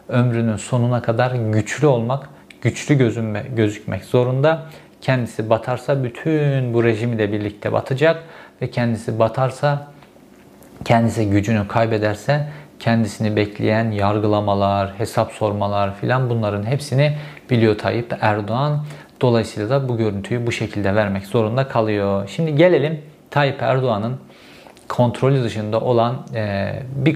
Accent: native